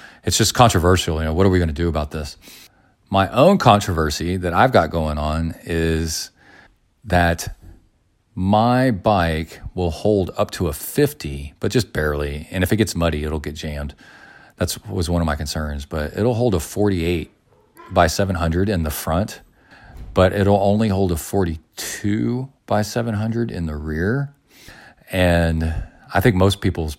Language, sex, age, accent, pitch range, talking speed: English, male, 40-59, American, 80-100 Hz, 165 wpm